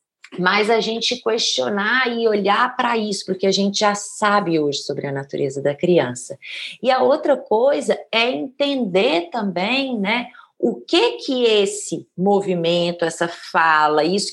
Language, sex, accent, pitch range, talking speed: Portuguese, female, Brazilian, 180-245 Hz, 145 wpm